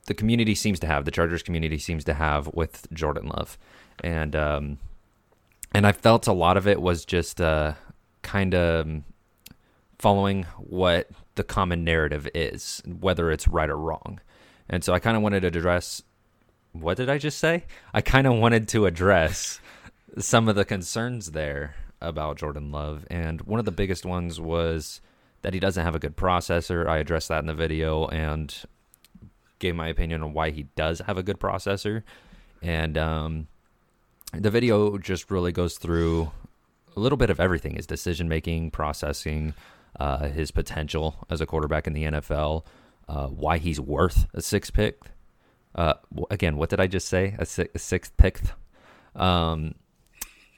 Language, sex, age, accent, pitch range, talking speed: English, male, 30-49, American, 80-100 Hz, 170 wpm